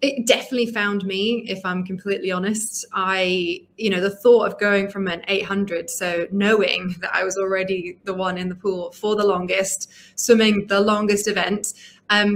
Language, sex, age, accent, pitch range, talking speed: English, female, 20-39, British, 190-215 Hz, 180 wpm